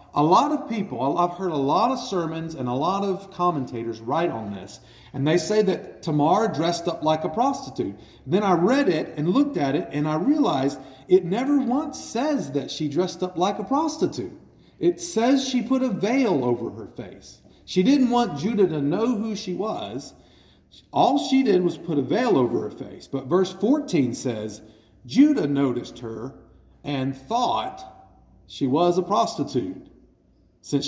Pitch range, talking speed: 130-205 Hz, 180 wpm